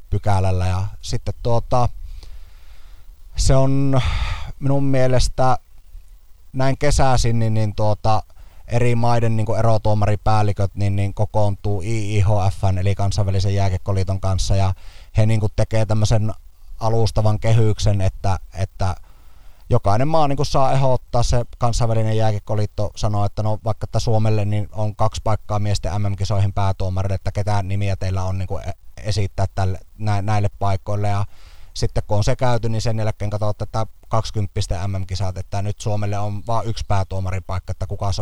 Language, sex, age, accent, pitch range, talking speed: Finnish, male, 30-49, native, 95-110 Hz, 145 wpm